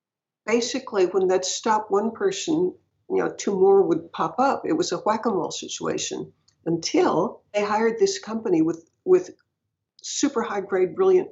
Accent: American